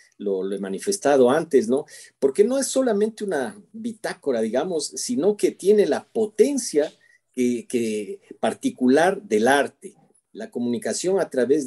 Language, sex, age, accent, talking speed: Spanish, male, 50-69, Mexican, 140 wpm